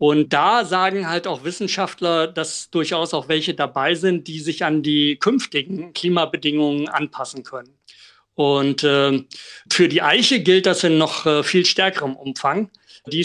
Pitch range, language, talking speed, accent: 145-180 Hz, German, 155 wpm, German